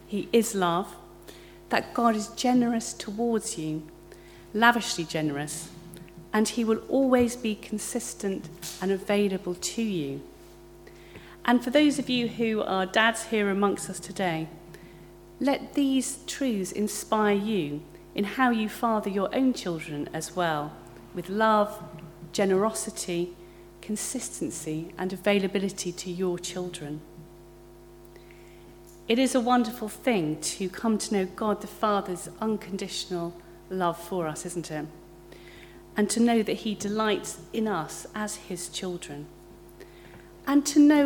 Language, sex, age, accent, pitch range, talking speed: English, female, 40-59, British, 175-225 Hz, 130 wpm